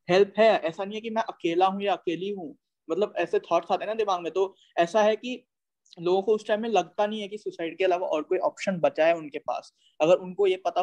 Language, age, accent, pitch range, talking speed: Hindi, 20-39, native, 160-195 Hz, 260 wpm